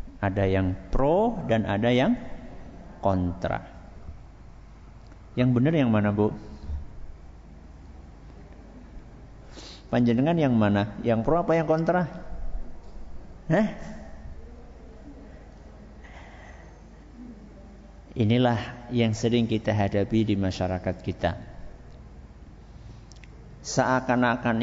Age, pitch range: 50-69, 85-115 Hz